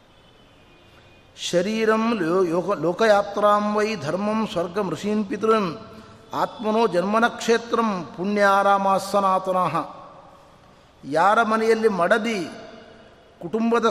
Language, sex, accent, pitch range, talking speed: Kannada, male, native, 185-235 Hz, 75 wpm